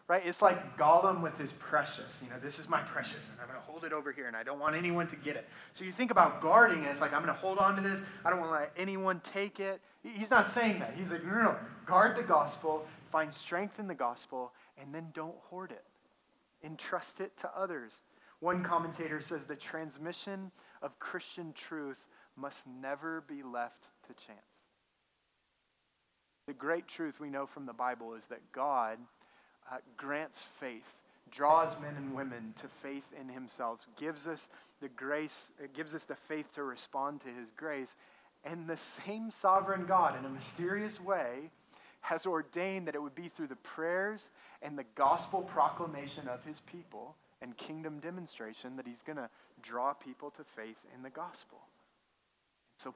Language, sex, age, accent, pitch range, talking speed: English, male, 30-49, American, 140-175 Hz, 190 wpm